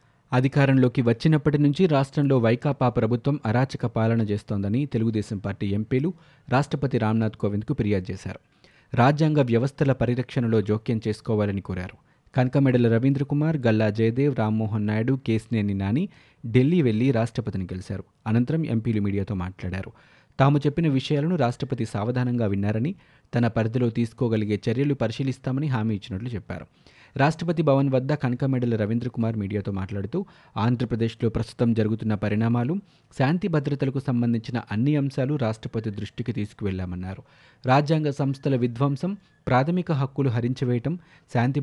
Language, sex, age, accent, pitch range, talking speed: Telugu, male, 30-49, native, 110-140 Hz, 120 wpm